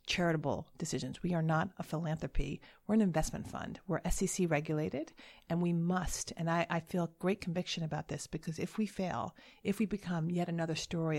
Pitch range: 155-180 Hz